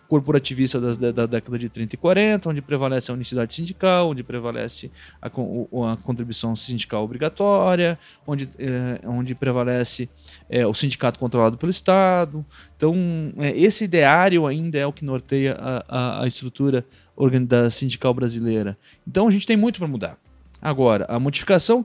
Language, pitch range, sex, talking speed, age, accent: Portuguese, 115-165 Hz, male, 145 wpm, 20-39, Brazilian